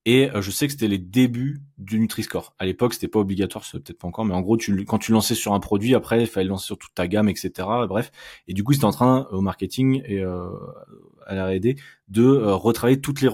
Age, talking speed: 20-39, 250 wpm